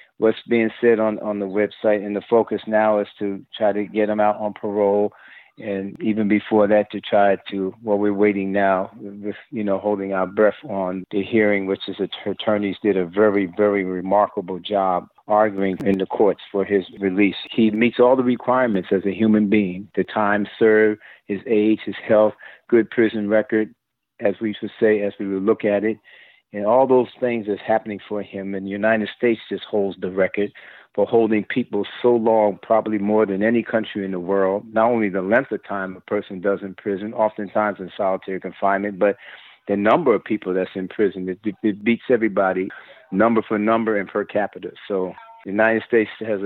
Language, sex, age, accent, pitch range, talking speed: English, male, 50-69, American, 95-110 Hz, 200 wpm